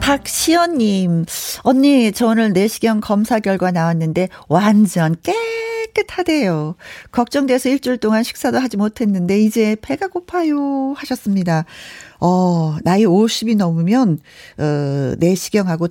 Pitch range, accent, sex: 175-255 Hz, native, female